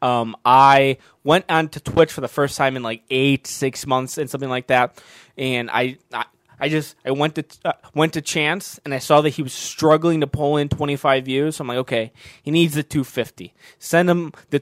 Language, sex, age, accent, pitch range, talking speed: English, male, 20-39, American, 130-170 Hz, 230 wpm